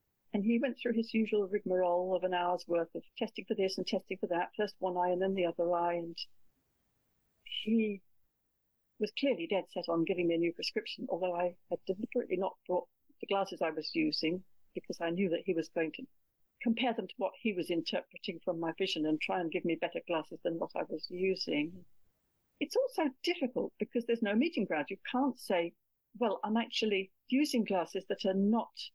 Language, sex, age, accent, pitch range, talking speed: English, female, 60-79, British, 175-235 Hz, 205 wpm